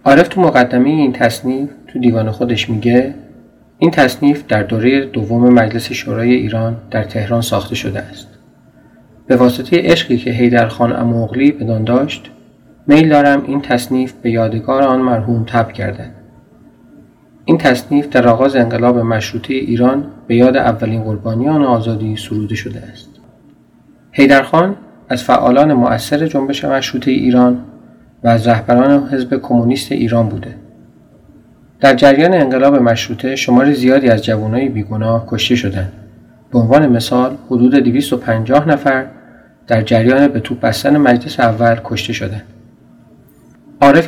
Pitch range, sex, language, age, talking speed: 115-135 Hz, male, Persian, 40-59, 130 wpm